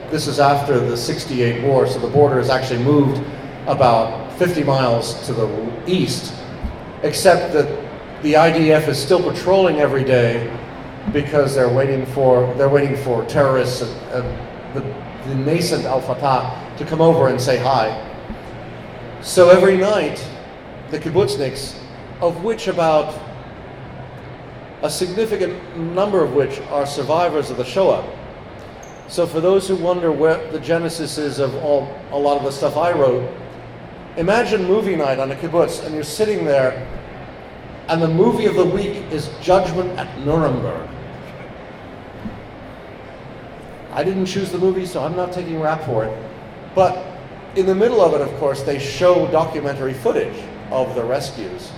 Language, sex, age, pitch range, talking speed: English, male, 40-59, 130-175 Hz, 150 wpm